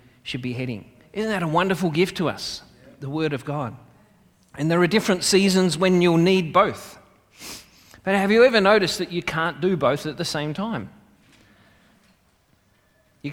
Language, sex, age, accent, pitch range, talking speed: English, male, 30-49, Australian, 130-170 Hz, 170 wpm